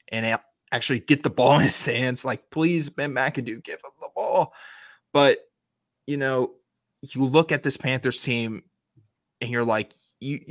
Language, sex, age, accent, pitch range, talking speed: English, male, 20-39, American, 115-150 Hz, 165 wpm